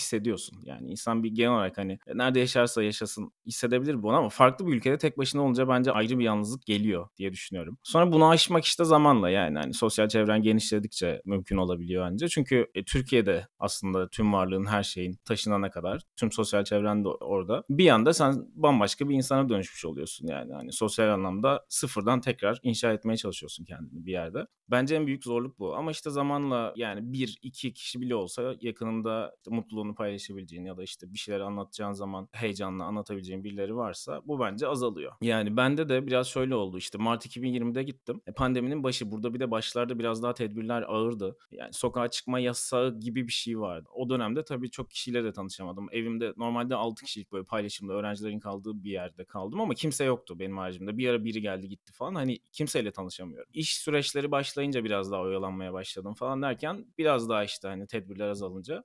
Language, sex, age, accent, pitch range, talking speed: Turkish, male, 30-49, native, 100-130 Hz, 185 wpm